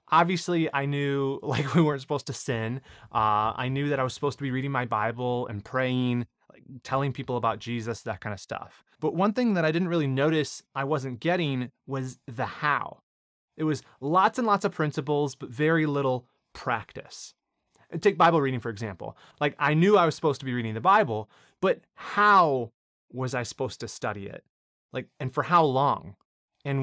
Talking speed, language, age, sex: 190 wpm, English, 30-49, male